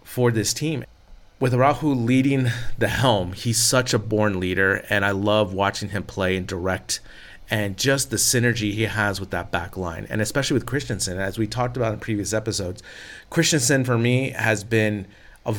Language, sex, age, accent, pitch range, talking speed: English, male, 30-49, American, 100-120 Hz, 185 wpm